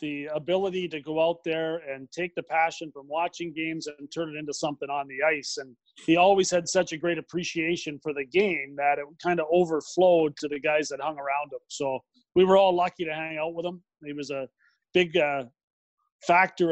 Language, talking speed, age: English, 215 wpm, 30-49